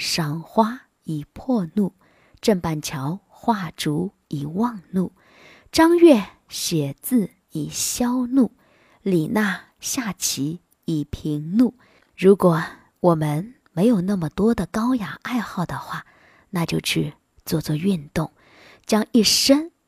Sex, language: female, Chinese